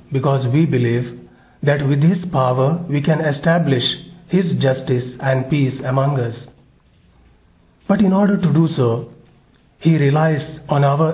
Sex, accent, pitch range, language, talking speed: male, Indian, 130-160 Hz, English, 140 wpm